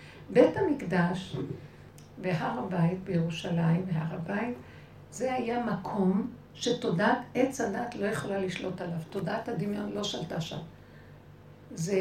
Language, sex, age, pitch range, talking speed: Hebrew, female, 60-79, 180-230 Hz, 115 wpm